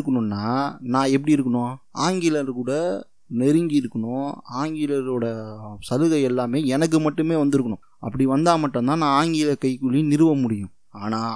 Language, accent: Tamil, native